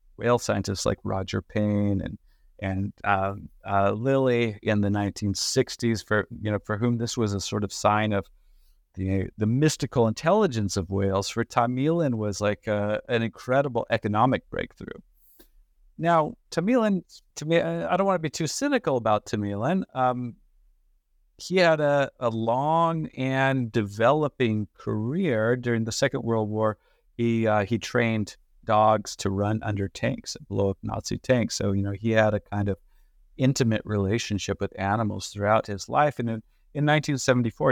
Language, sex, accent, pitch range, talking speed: English, male, American, 100-125 Hz, 160 wpm